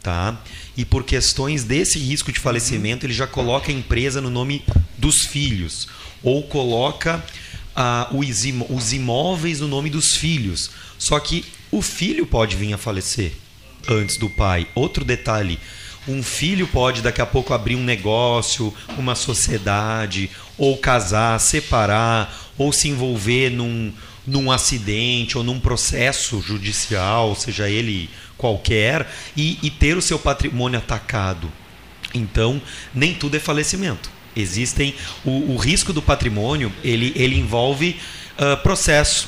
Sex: male